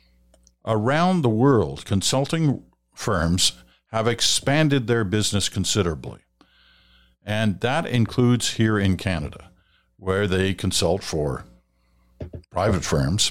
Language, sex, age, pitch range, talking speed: English, male, 50-69, 90-130 Hz, 100 wpm